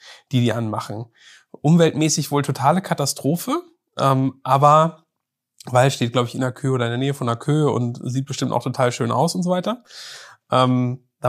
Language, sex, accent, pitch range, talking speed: German, male, German, 125-150 Hz, 185 wpm